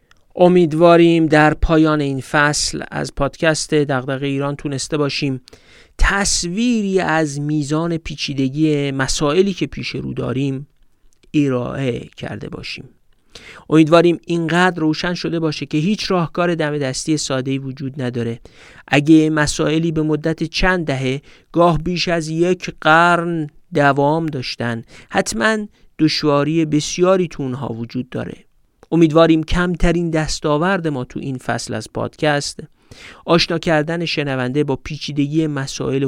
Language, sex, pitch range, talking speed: Persian, male, 130-160 Hz, 120 wpm